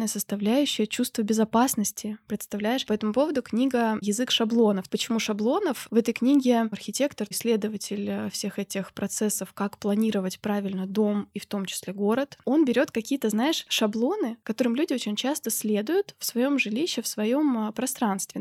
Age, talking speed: 20-39, 145 wpm